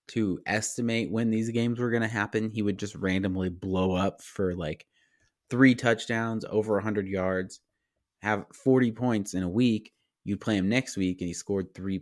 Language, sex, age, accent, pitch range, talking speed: English, male, 20-39, American, 95-120 Hz, 190 wpm